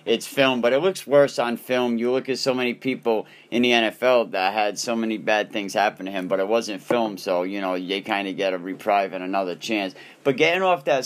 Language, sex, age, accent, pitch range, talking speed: English, male, 40-59, American, 120-145 Hz, 250 wpm